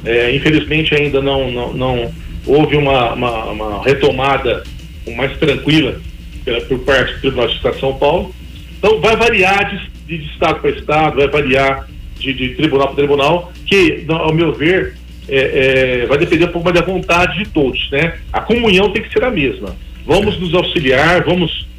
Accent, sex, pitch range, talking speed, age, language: Brazilian, male, 135-185 Hz, 180 wpm, 40-59, Portuguese